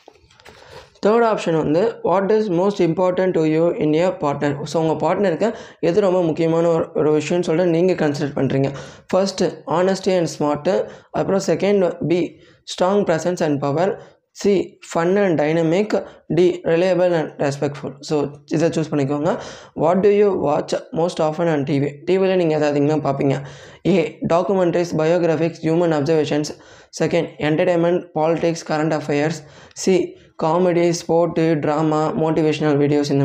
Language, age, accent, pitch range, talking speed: Tamil, 20-39, native, 150-180 Hz, 145 wpm